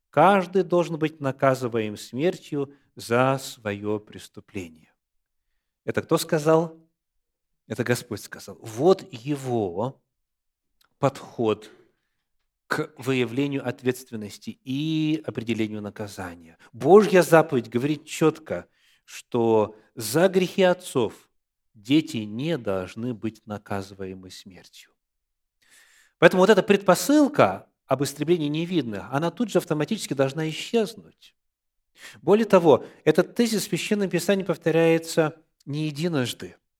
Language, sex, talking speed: Russian, male, 100 wpm